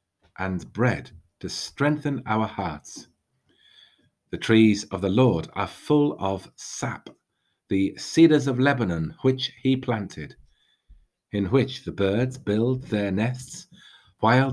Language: English